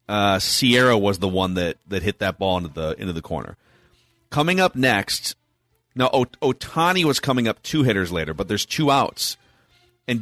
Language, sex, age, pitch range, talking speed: English, male, 30-49, 105-140 Hz, 180 wpm